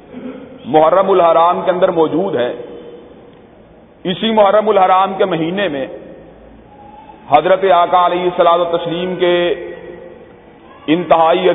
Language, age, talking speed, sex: Urdu, 40-59, 95 wpm, male